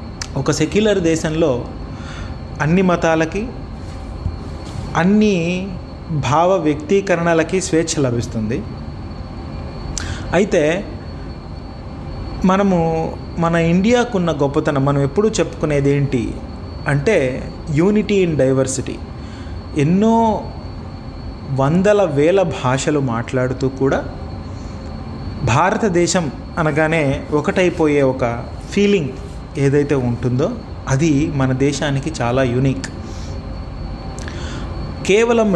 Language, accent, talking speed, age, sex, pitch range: Telugu, native, 70 wpm, 30-49, male, 115-160 Hz